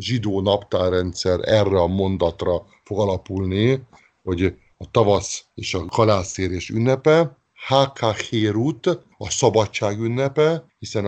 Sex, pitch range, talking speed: male, 95-120 Hz, 105 wpm